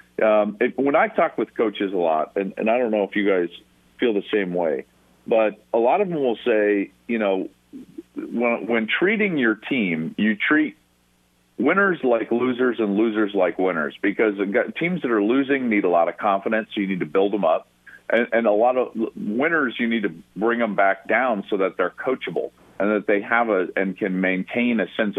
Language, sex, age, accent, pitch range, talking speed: English, male, 40-59, American, 90-115 Hz, 210 wpm